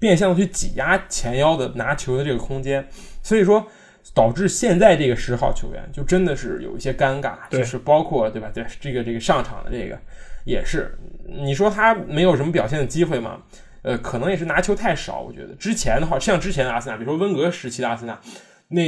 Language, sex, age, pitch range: Chinese, male, 20-39, 125-175 Hz